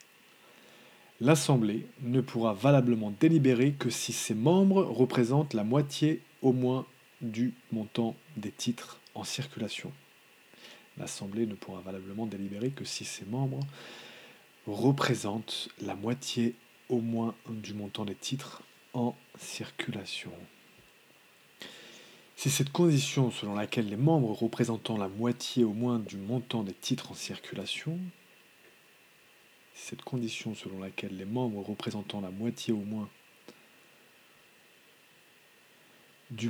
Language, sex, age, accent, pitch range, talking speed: English, male, 40-59, French, 110-140 Hz, 115 wpm